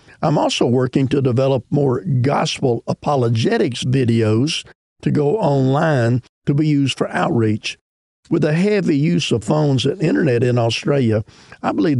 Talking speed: 145 wpm